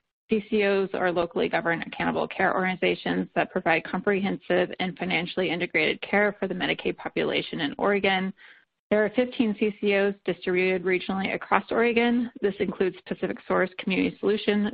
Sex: female